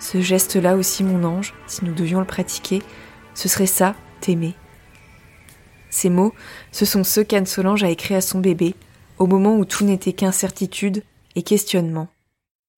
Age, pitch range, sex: 20-39, 180-200 Hz, female